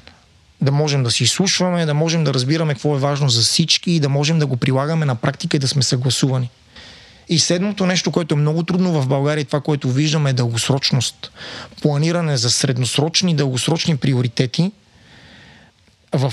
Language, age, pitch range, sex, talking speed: Bulgarian, 30-49, 135-160 Hz, male, 170 wpm